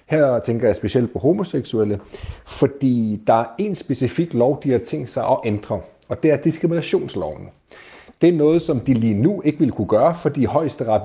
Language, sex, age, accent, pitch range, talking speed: Danish, male, 40-59, native, 110-145 Hz, 195 wpm